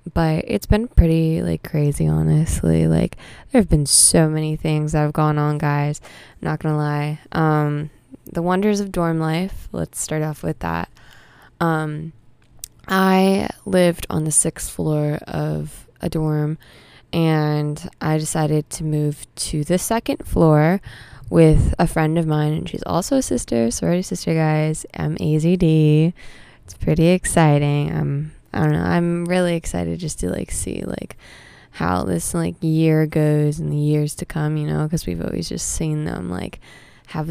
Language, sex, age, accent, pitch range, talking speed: English, female, 20-39, American, 145-165 Hz, 170 wpm